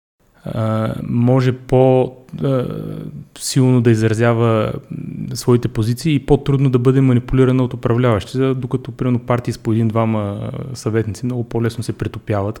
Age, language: 30-49, English